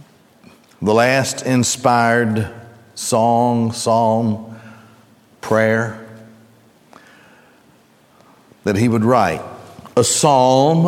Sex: male